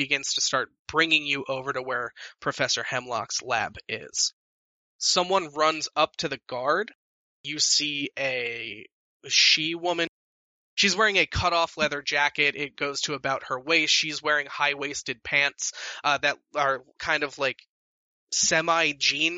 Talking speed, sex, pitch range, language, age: 140 wpm, male, 140-175 Hz, English, 20-39